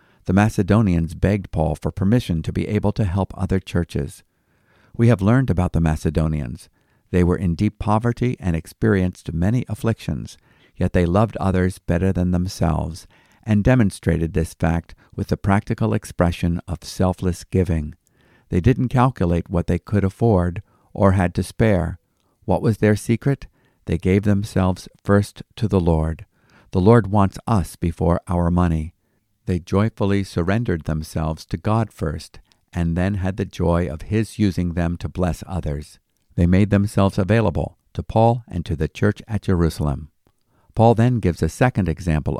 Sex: male